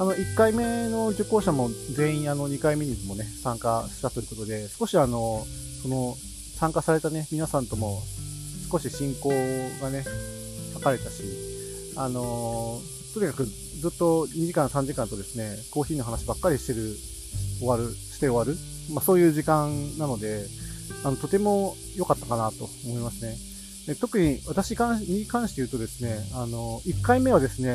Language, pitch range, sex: Japanese, 115-160 Hz, male